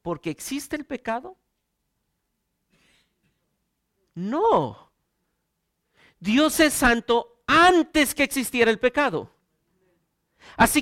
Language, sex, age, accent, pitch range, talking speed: Spanish, male, 50-69, Mexican, 205-265 Hz, 80 wpm